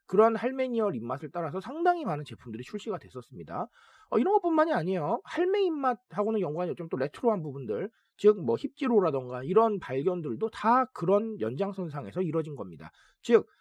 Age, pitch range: 40-59, 145-230 Hz